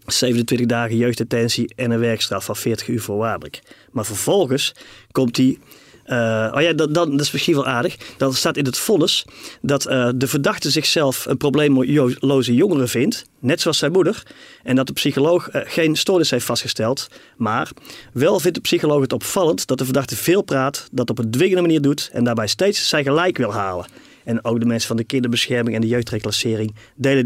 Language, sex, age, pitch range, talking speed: Dutch, male, 30-49, 115-140 Hz, 190 wpm